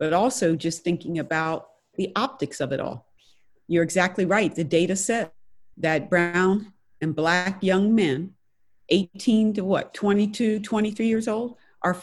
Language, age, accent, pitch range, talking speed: English, 50-69, American, 165-215 Hz, 150 wpm